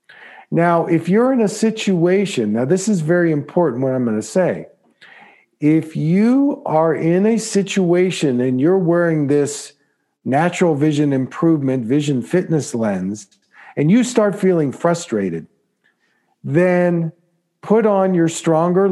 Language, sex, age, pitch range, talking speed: English, male, 50-69, 140-175 Hz, 135 wpm